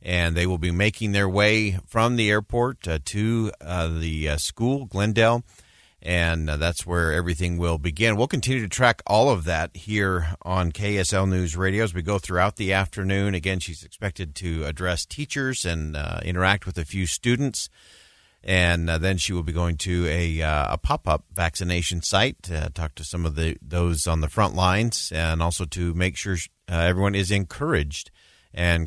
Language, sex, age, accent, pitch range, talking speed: English, male, 40-59, American, 85-105 Hz, 190 wpm